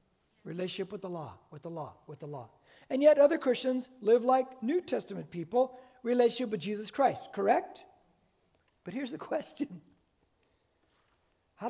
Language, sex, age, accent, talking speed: English, male, 60-79, American, 150 wpm